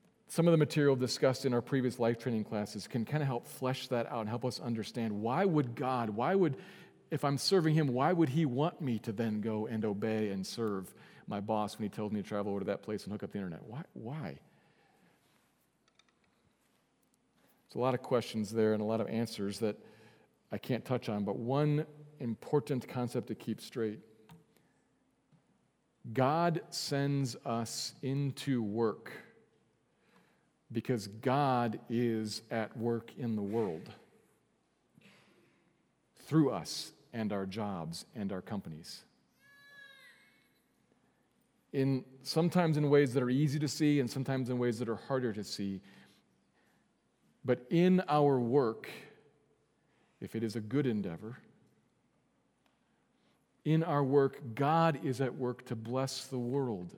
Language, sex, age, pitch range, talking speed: English, male, 40-59, 115-145 Hz, 155 wpm